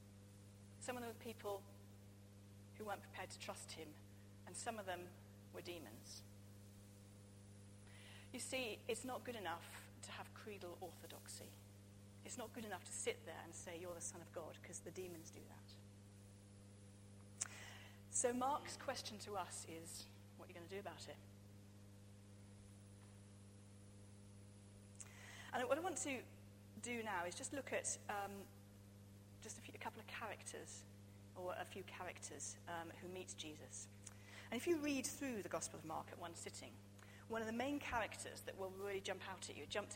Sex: female